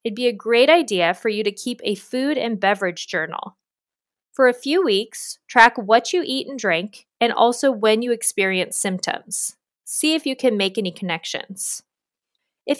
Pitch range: 195-265 Hz